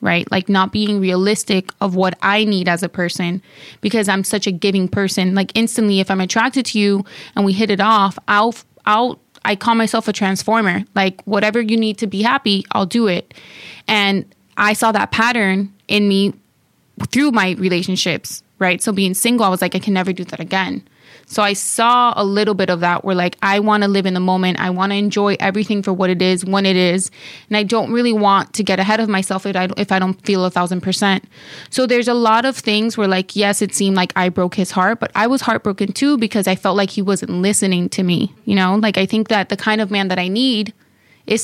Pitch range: 185-215 Hz